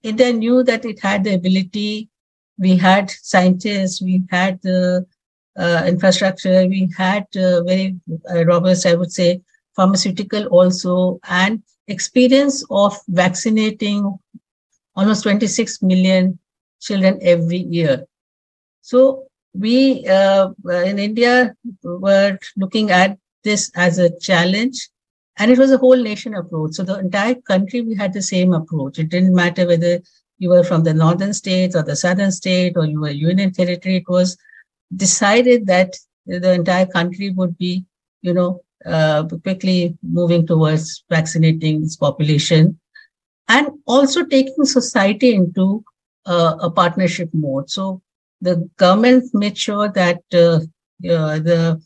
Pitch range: 175-205 Hz